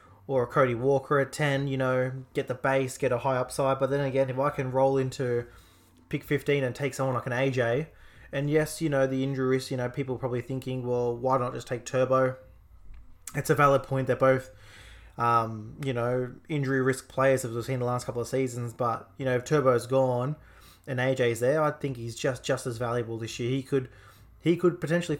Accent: Australian